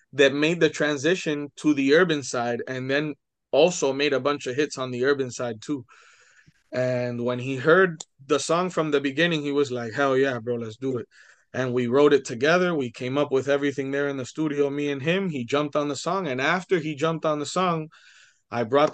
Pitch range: 125-155 Hz